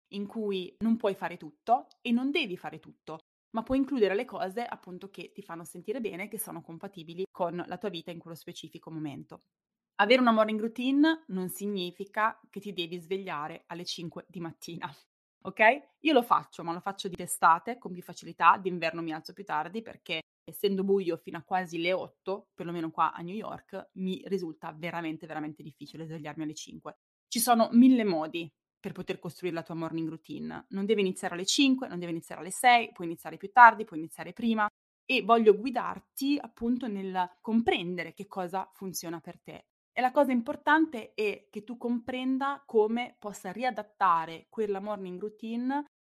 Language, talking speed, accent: Italian, 180 wpm, native